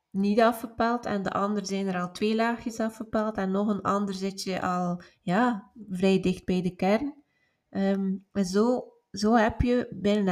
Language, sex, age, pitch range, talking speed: Dutch, female, 20-39, 190-220 Hz, 180 wpm